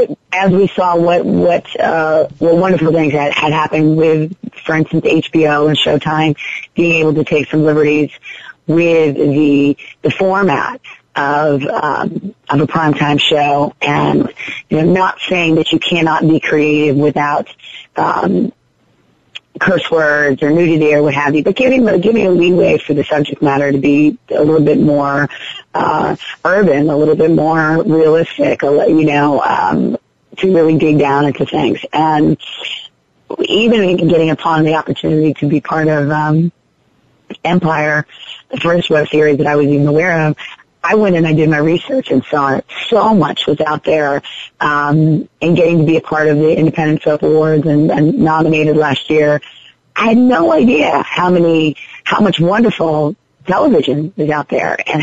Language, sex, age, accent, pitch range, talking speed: English, female, 30-49, American, 150-165 Hz, 170 wpm